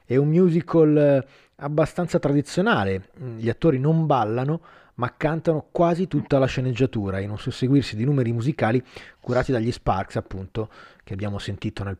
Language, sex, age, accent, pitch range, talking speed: Italian, male, 30-49, native, 110-145 Hz, 145 wpm